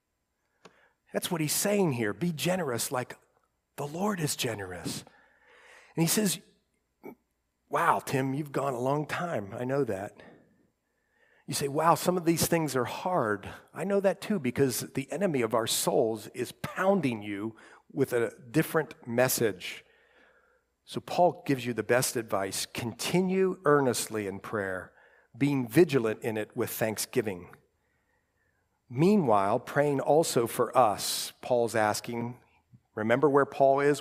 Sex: male